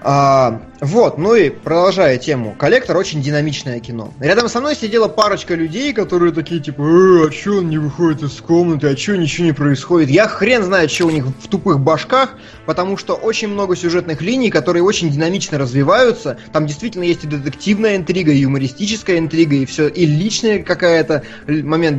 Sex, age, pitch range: male, 20-39, 145-190 Hz